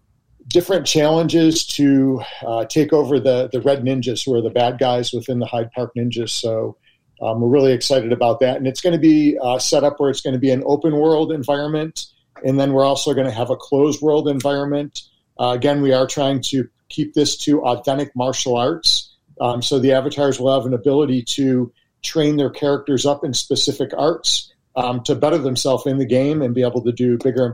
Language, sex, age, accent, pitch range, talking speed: English, male, 50-69, American, 125-145 Hz, 210 wpm